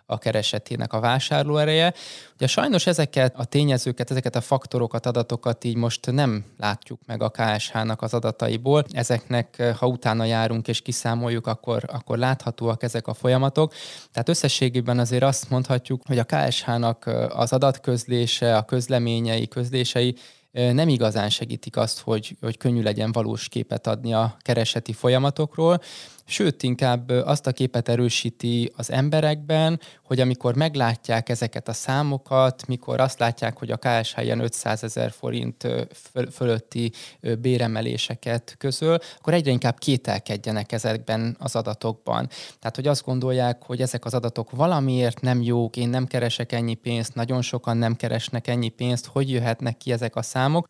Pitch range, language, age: 115-130 Hz, Hungarian, 20-39